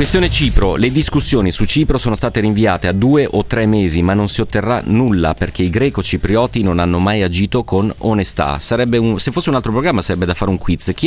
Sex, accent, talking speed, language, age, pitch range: male, native, 215 wpm, Italian, 30-49, 85-110 Hz